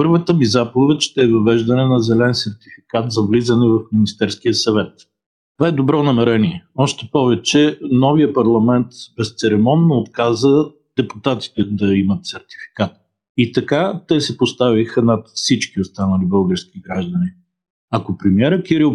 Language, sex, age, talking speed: Bulgarian, male, 50-69, 130 wpm